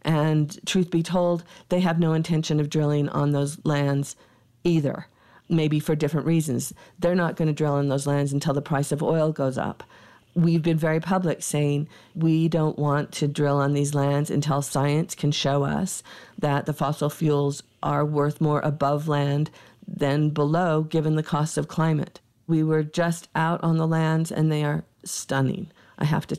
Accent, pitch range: American, 145-170 Hz